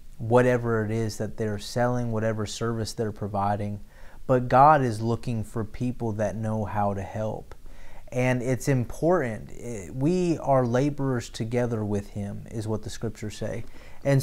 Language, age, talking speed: English, 30-49, 150 wpm